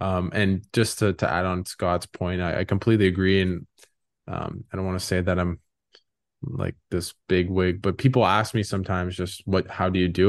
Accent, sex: American, male